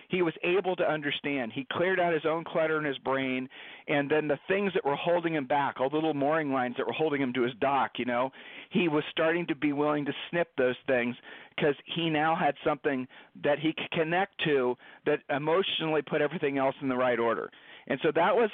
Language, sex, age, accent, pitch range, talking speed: English, male, 40-59, American, 140-175 Hz, 225 wpm